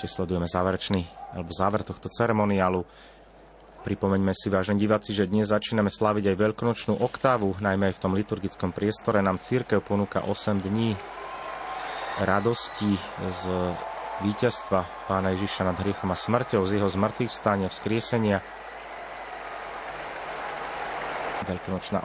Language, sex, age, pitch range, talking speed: Slovak, male, 30-49, 95-110 Hz, 120 wpm